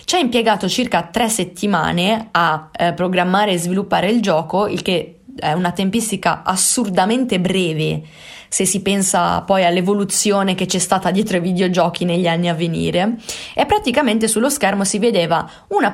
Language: Italian